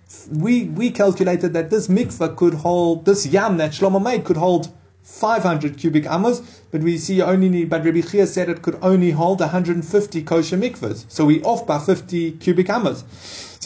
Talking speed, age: 195 wpm, 30-49